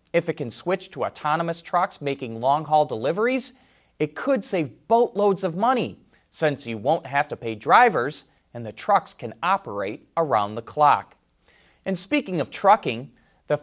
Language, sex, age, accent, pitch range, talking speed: English, male, 30-49, American, 130-195 Hz, 160 wpm